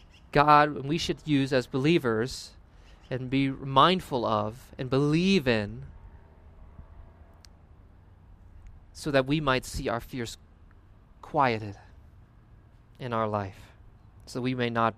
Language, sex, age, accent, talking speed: English, male, 30-49, American, 110 wpm